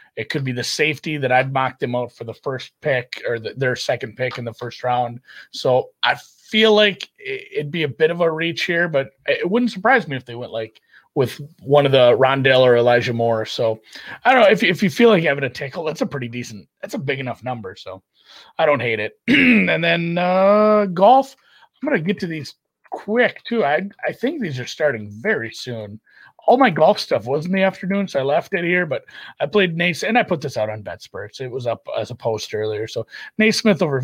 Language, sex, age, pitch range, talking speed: English, male, 30-49, 120-180 Hz, 240 wpm